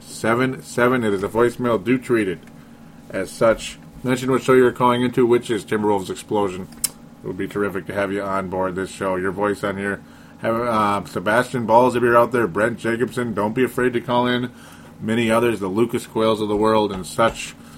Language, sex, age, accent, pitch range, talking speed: English, male, 30-49, American, 100-120 Hz, 215 wpm